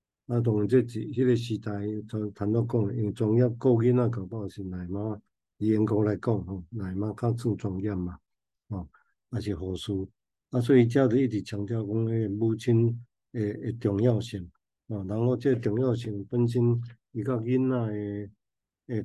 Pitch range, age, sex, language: 105-120 Hz, 50-69, male, Chinese